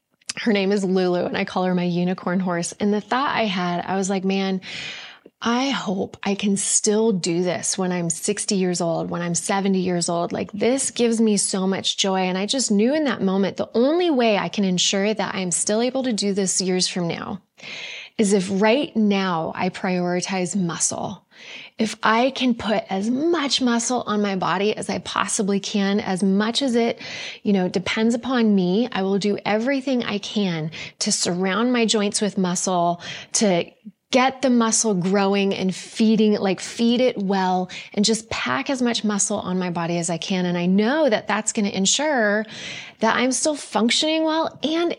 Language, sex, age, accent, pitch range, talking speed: English, female, 20-39, American, 185-230 Hz, 195 wpm